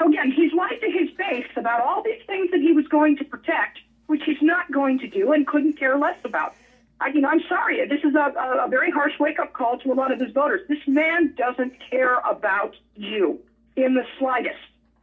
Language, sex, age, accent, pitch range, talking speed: English, female, 50-69, American, 235-305 Hz, 220 wpm